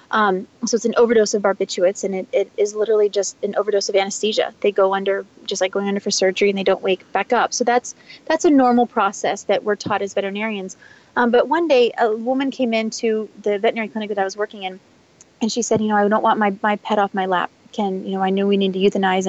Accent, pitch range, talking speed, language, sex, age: American, 195-230 Hz, 255 wpm, English, female, 30-49